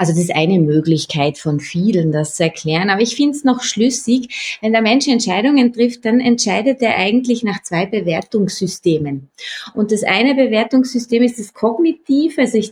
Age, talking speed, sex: 20-39, 175 wpm, female